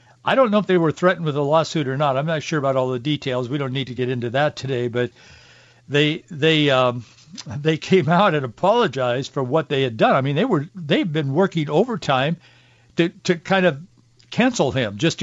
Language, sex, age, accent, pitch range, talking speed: English, male, 60-79, American, 125-180 Hz, 215 wpm